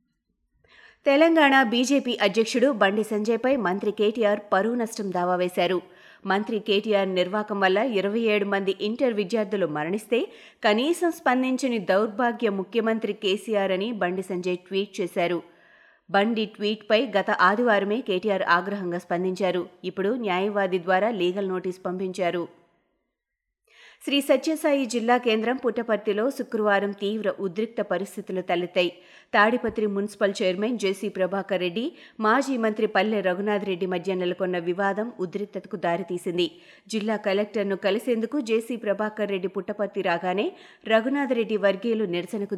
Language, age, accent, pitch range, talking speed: Telugu, 20-39, native, 190-225 Hz, 115 wpm